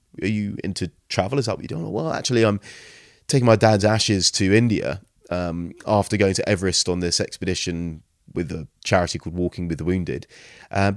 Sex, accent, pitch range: male, British, 90-115 Hz